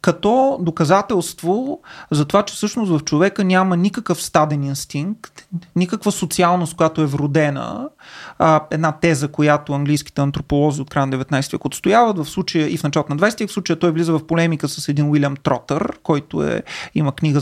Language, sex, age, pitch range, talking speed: Bulgarian, male, 30-49, 145-195 Hz, 170 wpm